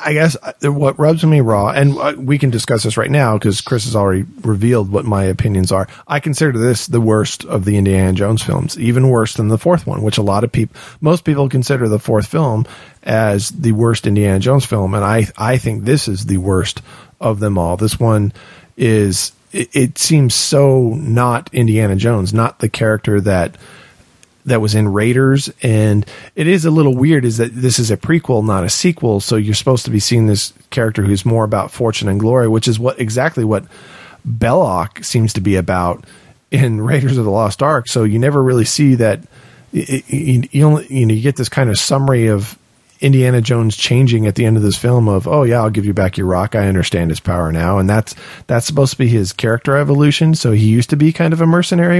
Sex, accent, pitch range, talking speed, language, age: male, American, 105-135 Hz, 220 wpm, English, 40-59